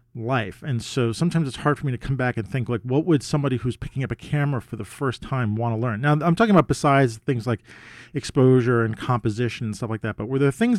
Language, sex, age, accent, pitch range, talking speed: English, male, 40-59, American, 115-145 Hz, 260 wpm